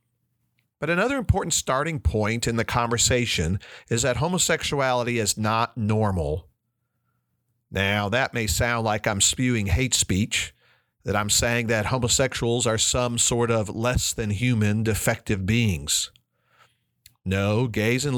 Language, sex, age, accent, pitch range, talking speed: English, male, 50-69, American, 110-125 Hz, 130 wpm